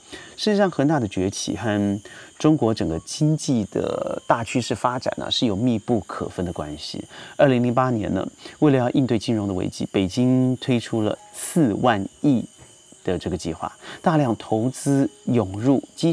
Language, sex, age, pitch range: Chinese, male, 30-49, 105-145 Hz